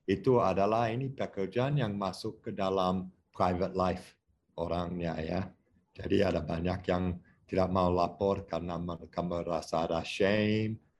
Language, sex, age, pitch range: English, male, 50-69, 85-105 Hz